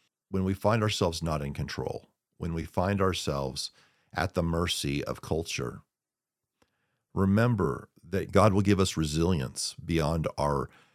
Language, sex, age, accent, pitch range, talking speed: English, male, 50-69, American, 75-95 Hz, 135 wpm